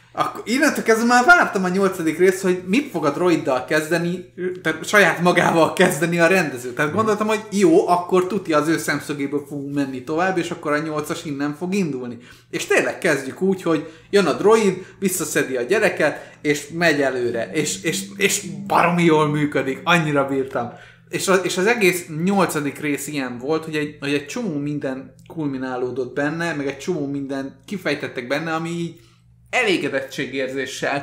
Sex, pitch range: male, 135-175 Hz